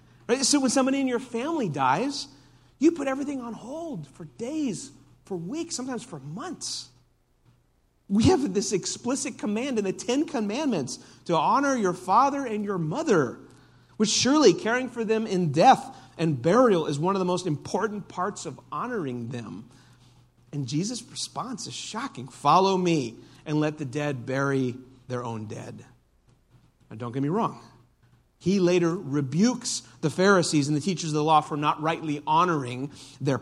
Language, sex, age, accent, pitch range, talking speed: English, male, 40-59, American, 130-210 Hz, 160 wpm